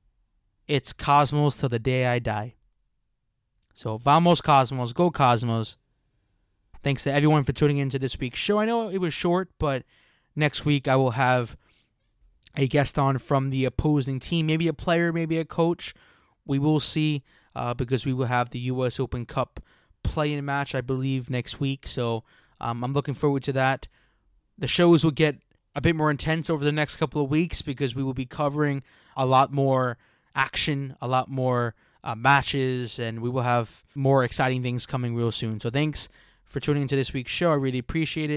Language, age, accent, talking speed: English, 20-39, American, 185 wpm